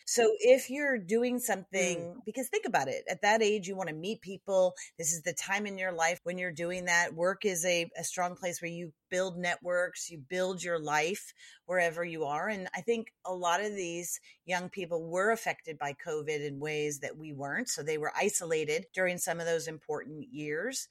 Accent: American